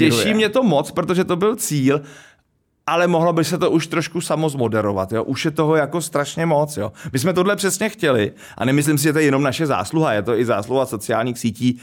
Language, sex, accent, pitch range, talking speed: Czech, male, native, 125-165 Hz, 220 wpm